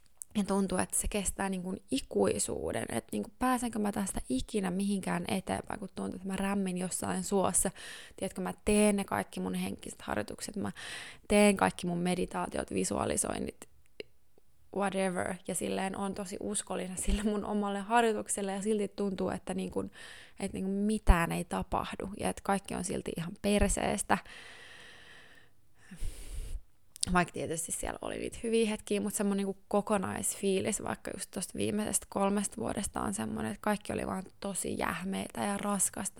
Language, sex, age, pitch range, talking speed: Finnish, female, 20-39, 180-210 Hz, 160 wpm